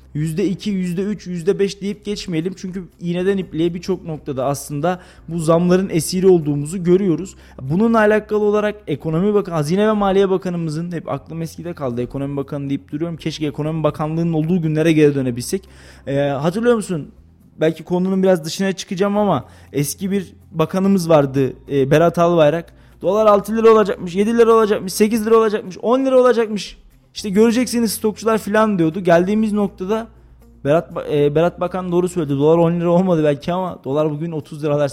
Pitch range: 155-205 Hz